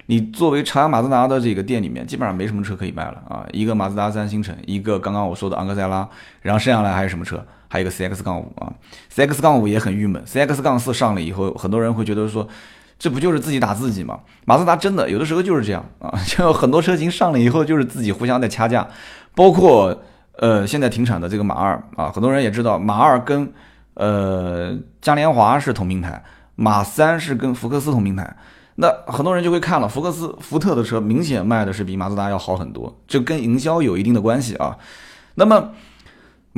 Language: Chinese